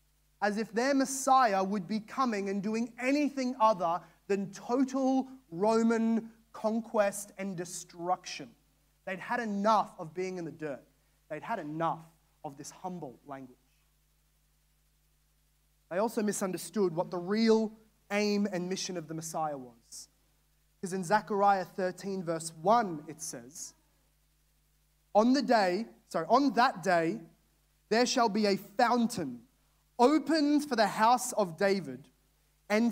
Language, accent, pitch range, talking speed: English, Australian, 170-235 Hz, 130 wpm